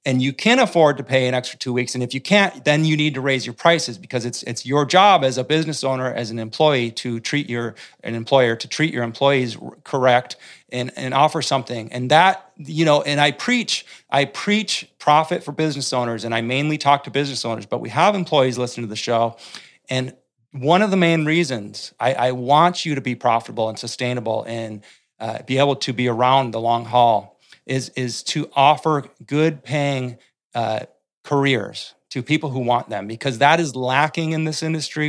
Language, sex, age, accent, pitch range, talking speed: English, male, 30-49, American, 125-155 Hz, 205 wpm